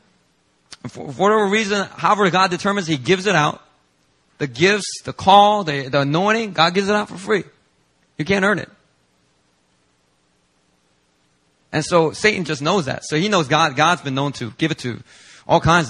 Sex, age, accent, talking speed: male, 30-49, American, 175 wpm